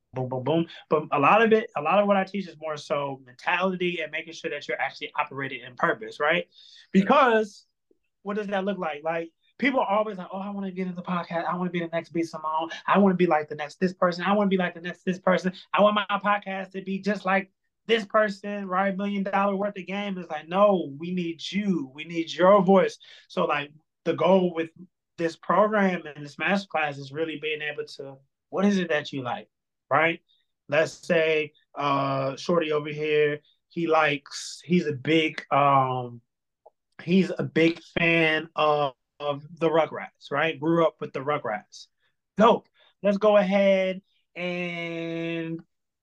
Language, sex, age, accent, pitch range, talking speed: English, male, 20-39, American, 155-195 Hz, 200 wpm